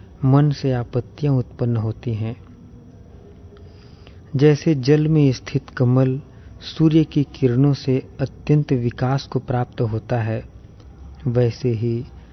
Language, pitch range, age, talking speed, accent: English, 115-135 Hz, 40-59, 110 wpm, Indian